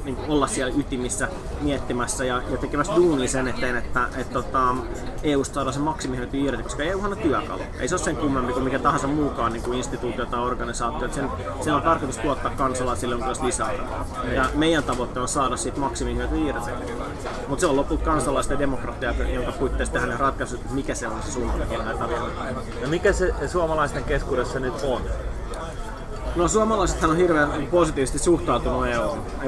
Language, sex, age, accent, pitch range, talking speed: Finnish, male, 20-39, native, 125-145 Hz, 180 wpm